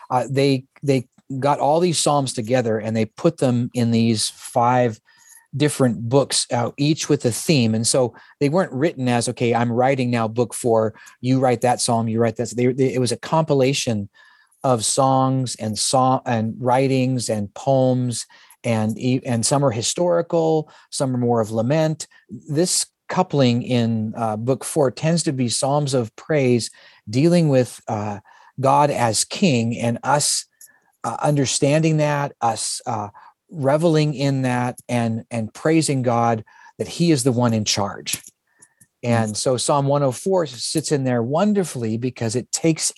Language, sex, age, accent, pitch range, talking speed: English, male, 40-59, American, 115-145 Hz, 160 wpm